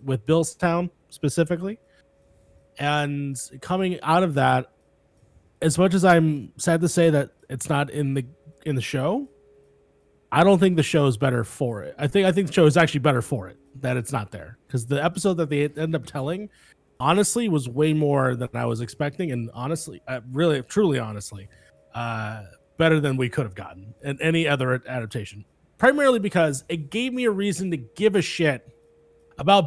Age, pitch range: 30-49, 130-185 Hz